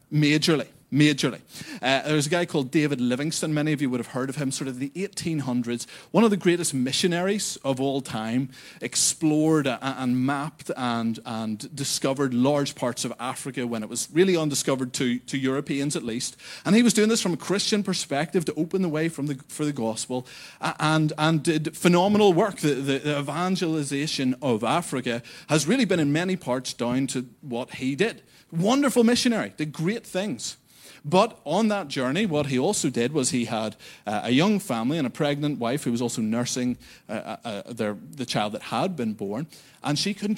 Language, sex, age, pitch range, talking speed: English, male, 30-49, 130-180 Hz, 190 wpm